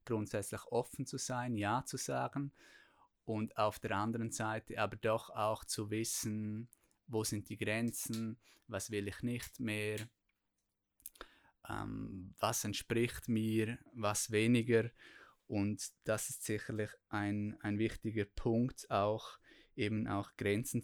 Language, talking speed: German, 125 wpm